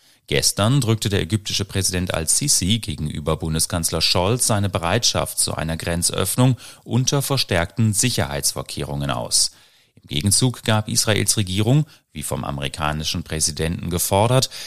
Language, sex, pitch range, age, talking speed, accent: German, male, 85-120 Hz, 30-49, 115 wpm, German